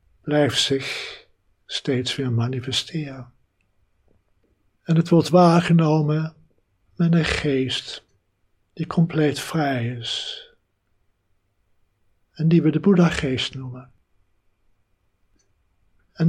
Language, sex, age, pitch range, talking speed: Dutch, male, 60-79, 100-155 Hz, 90 wpm